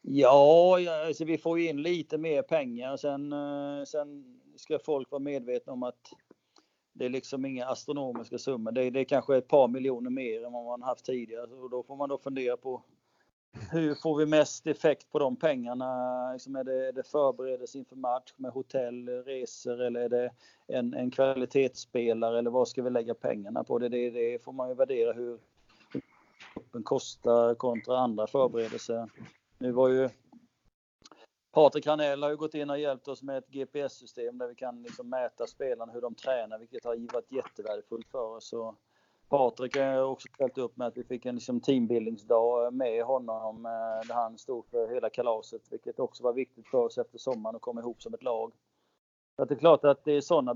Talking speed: 190 wpm